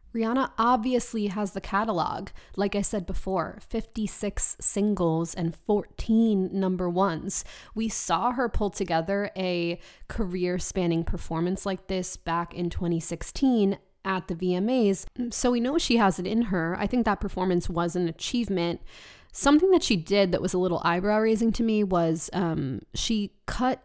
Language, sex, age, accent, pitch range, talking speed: English, female, 20-39, American, 175-210 Hz, 155 wpm